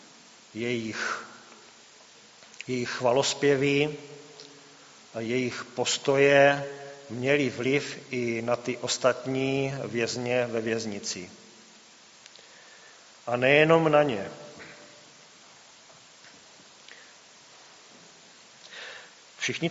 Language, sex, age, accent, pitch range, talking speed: Czech, male, 40-59, native, 125-150 Hz, 60 wpm